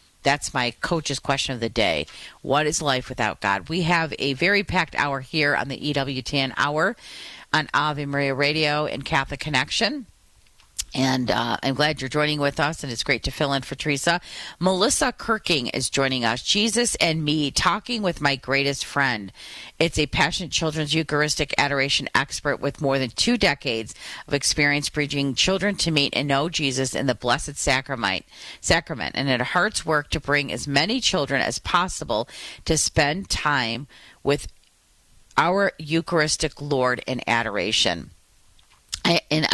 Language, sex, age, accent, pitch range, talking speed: English, female, 40-59, American, 135-170 Hz, 160 wpm